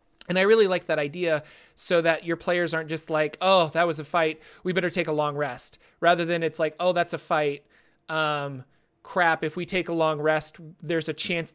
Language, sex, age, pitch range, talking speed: English, male, 30-49, 150-170 Hz, 225 wpm